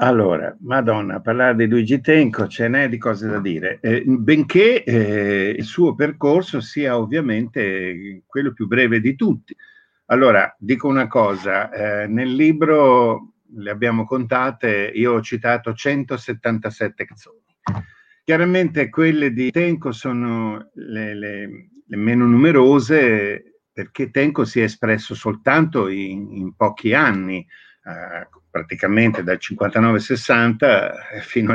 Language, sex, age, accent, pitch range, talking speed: Italian, male, 50-69, native, 110-145 Hz, 125 wpm